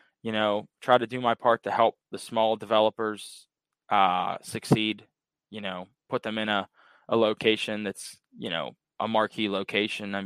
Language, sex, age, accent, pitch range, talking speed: English, male, 20-39, American, 95-115 Hz, 170 wpm